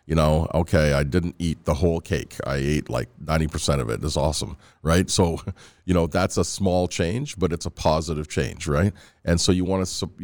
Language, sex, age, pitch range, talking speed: English, male, 40-59, 75-95 Hz, 225 wpm